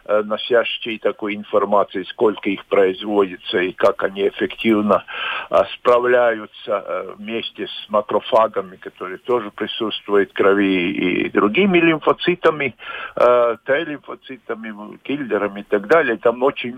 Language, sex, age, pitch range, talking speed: Russian, male, 50-69, 115-180 Hz, 105 wpm